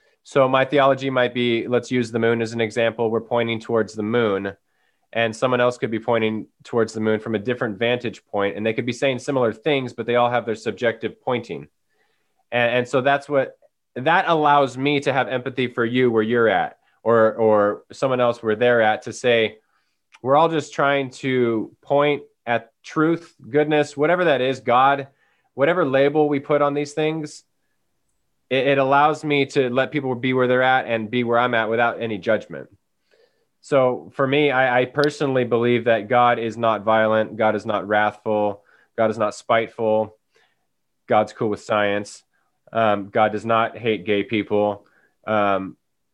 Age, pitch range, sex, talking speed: 20-39, 110-135 Hz, male, 180 wpm